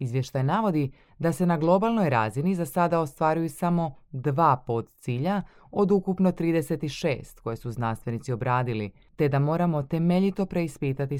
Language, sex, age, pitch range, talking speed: Croatian, female, 20-39, 120-160 Hz, 135 wpm